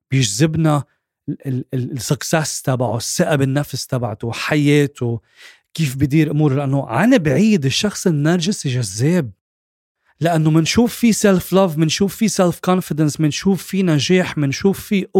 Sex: male